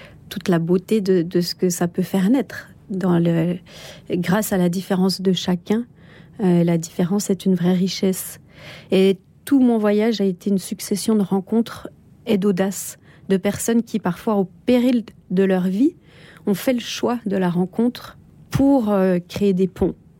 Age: 40-59